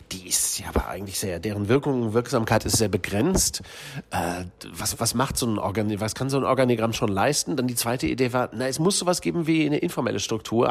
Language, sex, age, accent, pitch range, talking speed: German, male, 40-59, German, 105-135 Hz, 230 wpm